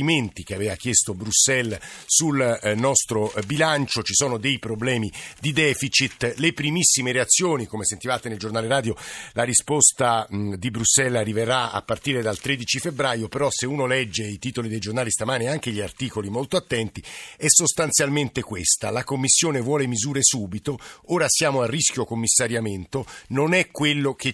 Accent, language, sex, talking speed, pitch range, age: native, Italian, male, 155 wpm, 110-145 Hz, 50-69